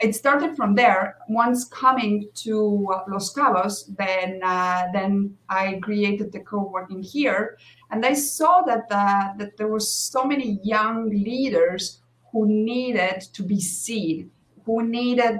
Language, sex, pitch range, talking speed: English, female, 190-235 Hz, 135 wpm